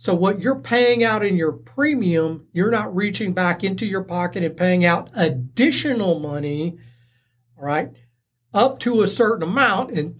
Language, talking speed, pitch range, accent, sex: English, 165 wpm, 135-225 Hz, American, male